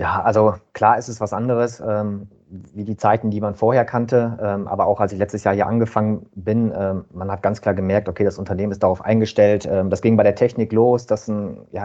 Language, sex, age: German, male, 30-49